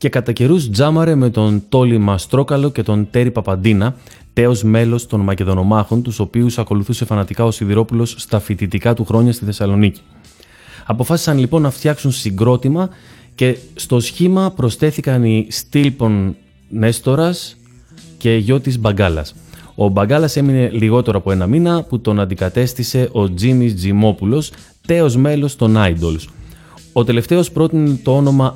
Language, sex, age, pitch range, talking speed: Greek, male, 30-49, 105-135 Hz, 140 wpm